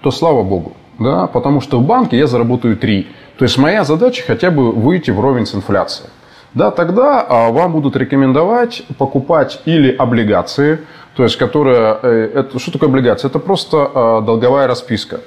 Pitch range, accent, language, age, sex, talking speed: 115-160 Hz, native, Russian, 20-39, male, 170 wpm